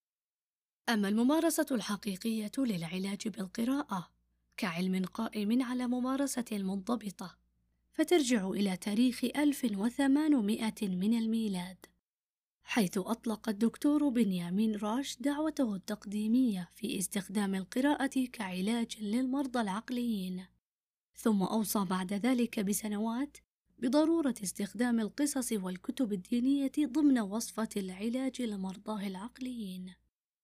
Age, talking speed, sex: 20-39, 85 wpm, female